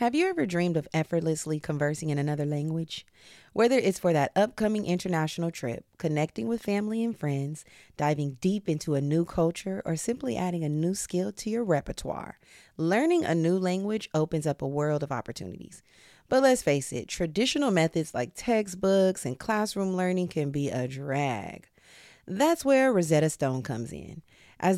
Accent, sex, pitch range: American, female, 145-195 Hz